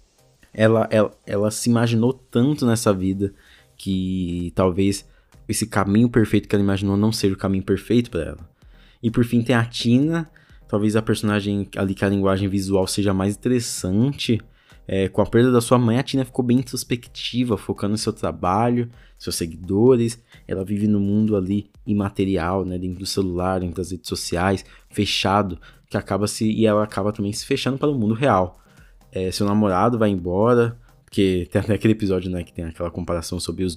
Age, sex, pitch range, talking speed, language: 20-39, male, 95-115 Hz, 180 wpm, Portuguese